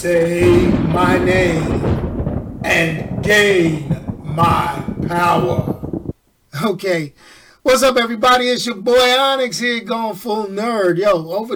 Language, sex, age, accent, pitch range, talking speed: English, male, 40-59, American, 170-215 Hz, 110 wpm